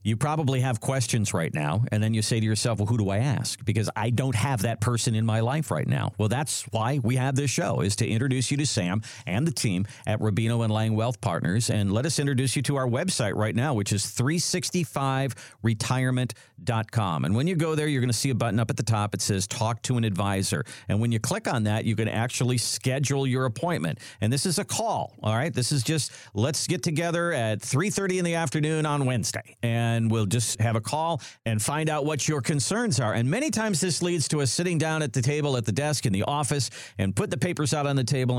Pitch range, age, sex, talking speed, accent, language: 115-140 Hz, 50-69, male, 245 wpm, American, English